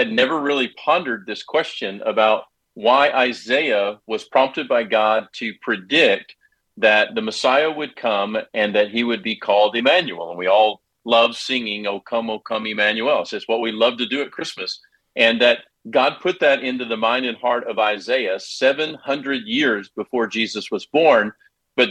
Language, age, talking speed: English, 50-69, 175 wpm